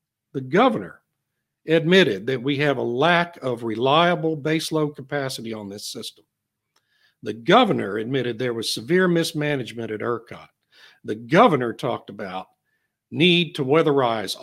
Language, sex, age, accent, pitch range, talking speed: English, male, 60-79, American, 135-165 Hz, 130 wpm